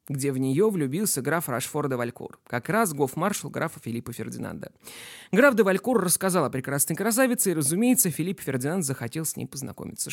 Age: 20-39